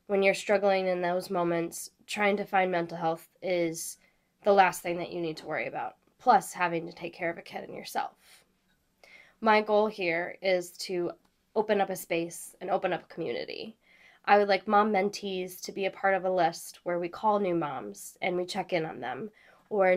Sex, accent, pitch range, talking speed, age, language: female, American, 185-220 Hz, 205 wpm, 10-29, English